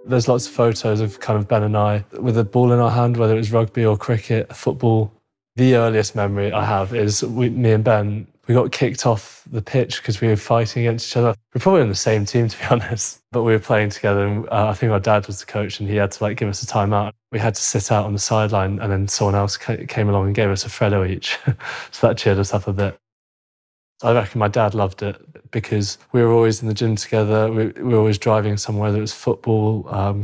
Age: 20-39